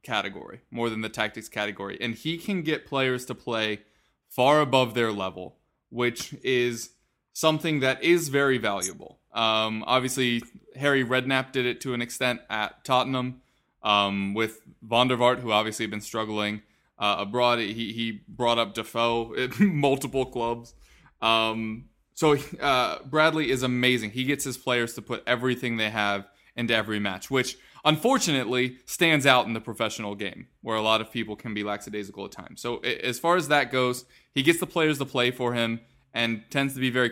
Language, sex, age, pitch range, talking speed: English, male, 20-39, 110-135 Hz, 175 wpm